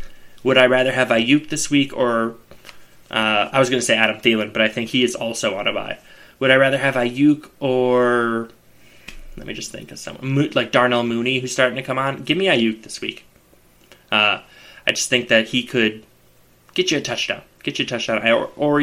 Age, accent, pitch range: 20-39, American, 115-145 Hz